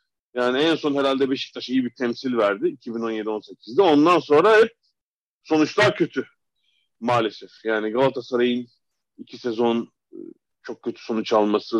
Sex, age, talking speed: male, 40-59, 120 wpm